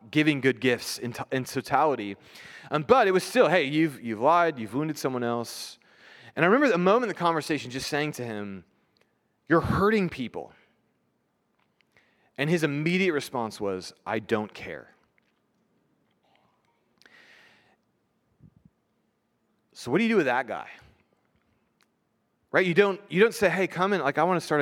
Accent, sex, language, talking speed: American, male, English, 150 wpm